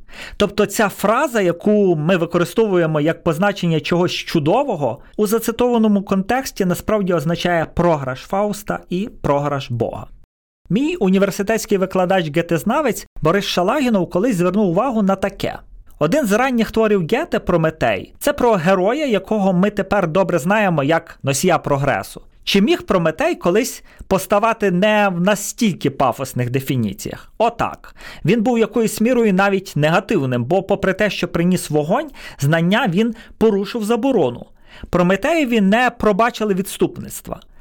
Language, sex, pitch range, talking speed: Ukrainian, male, 165-215 Hz, 125 wpm